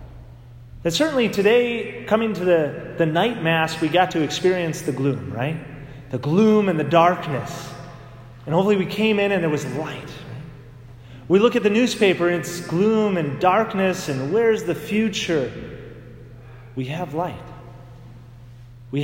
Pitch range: 125-205 Hz